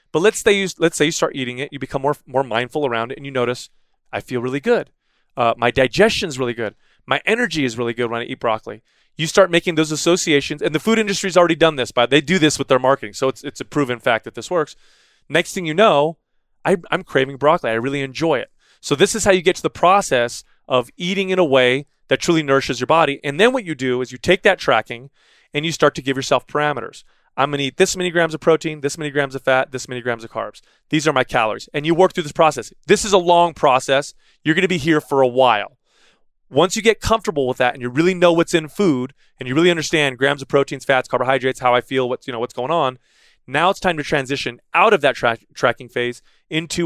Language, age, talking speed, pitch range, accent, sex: English, 30-49, 250 wpm, 130-170 Hz, American, male